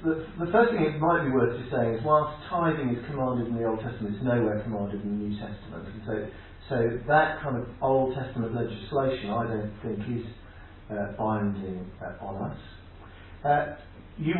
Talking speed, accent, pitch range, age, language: 190 wpm, British, 105-150 Hz, 50-69, English